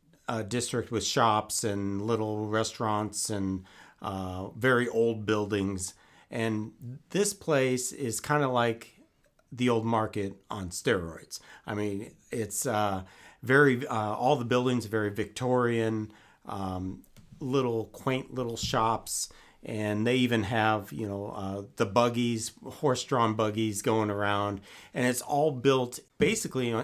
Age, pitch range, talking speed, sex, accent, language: 40-59, 100-125 Hz, 130 wpm, male, American, English